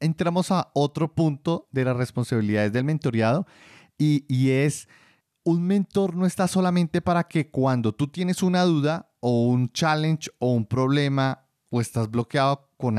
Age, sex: 30-49, male